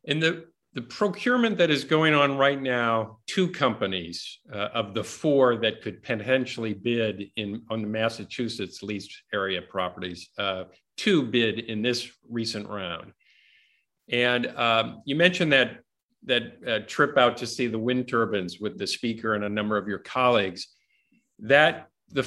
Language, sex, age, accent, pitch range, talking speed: English, male, 50-69, American, 110-150 Hz, 160 wpm